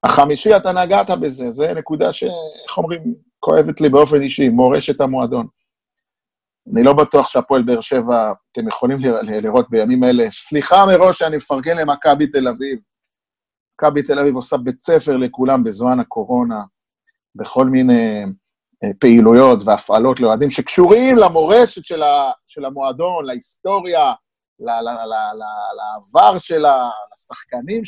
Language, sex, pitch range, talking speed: Hebrew, male, 125-205 Hz, 130 wpm